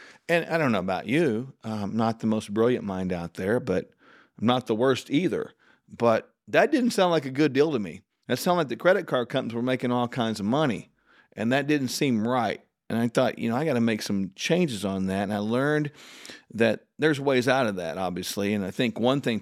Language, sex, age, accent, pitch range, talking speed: English, male, 50-69, American, 105-140 Hz, 235 wpm